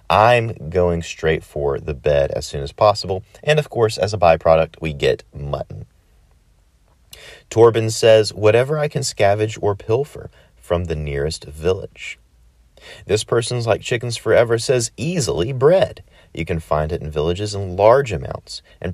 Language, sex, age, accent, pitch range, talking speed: English, male, 40-59, American, 80-115 Hz, 155 wpm